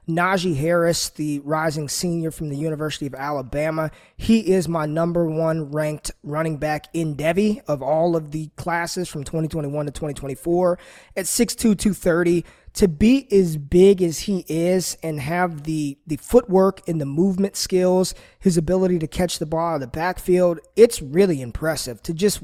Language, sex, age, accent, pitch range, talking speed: English, male, 20-39, American, 155-190 Hz, 165 wpm